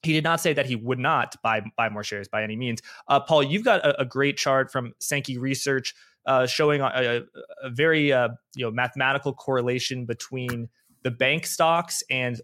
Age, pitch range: 20-39, 125-150 Hz